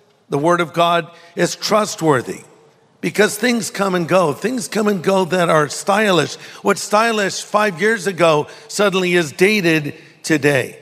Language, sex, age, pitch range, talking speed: English, male, 50-69, 155-195 Hz, 150 wpm